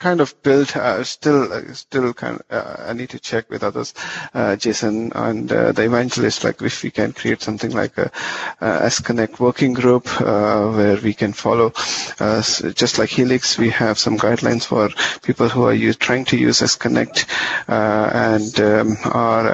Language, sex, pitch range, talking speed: English, male, 110-130 Hz, 185 wpm